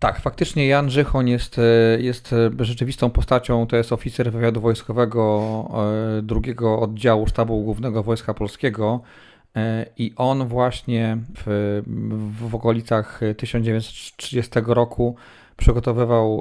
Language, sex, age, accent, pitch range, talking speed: Polish, male, 40-59, native, 110-125 Hz, 100 wpm